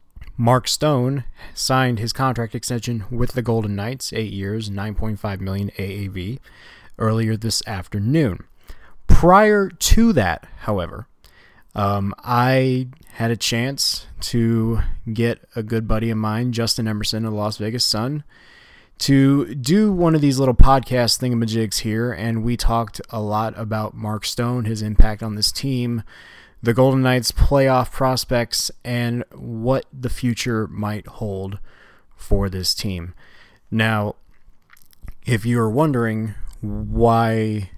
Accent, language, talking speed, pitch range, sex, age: American, English, 130 wpm, 105-120 Hz, male, 20-39